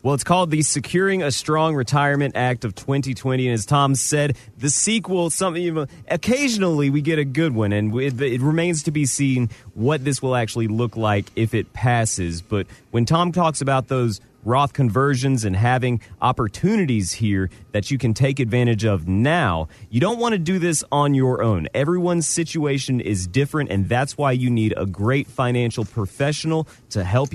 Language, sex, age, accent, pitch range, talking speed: English, male, 30-49, American, 110-150 Hz, 185 wpm